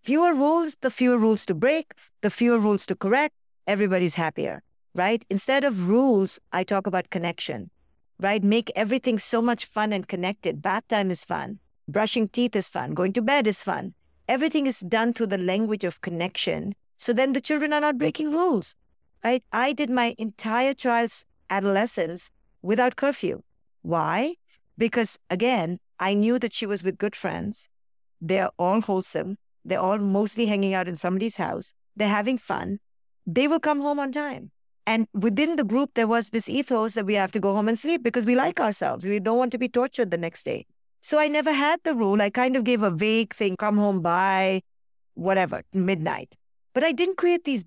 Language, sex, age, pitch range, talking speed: English, female, 50-69, 195-255 Hz, 190 wpm